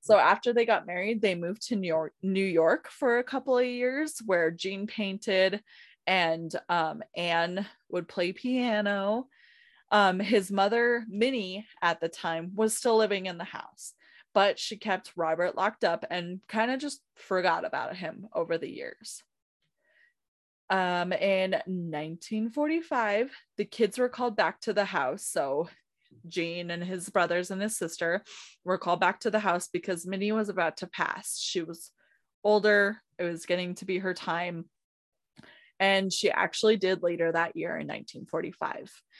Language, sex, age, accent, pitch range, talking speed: English, female, 20-39, American, 180-220 Hz, 160 wpm